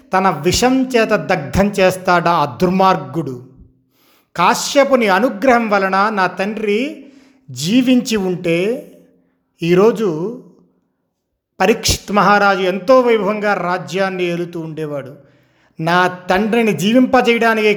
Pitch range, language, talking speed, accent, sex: 180-235 Hz, Telugu, 85 wpm, native, male